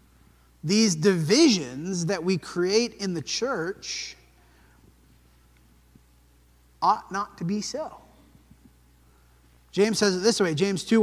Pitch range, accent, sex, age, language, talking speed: 150-205 Hz, American, male, 30-49, English, 110 wpm